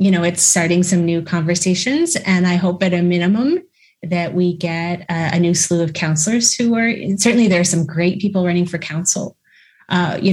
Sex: female